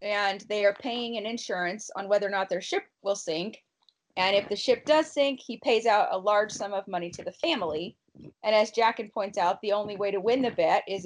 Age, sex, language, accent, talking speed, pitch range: 20-39, female, English, American, 240 wpm, 200-250 Hz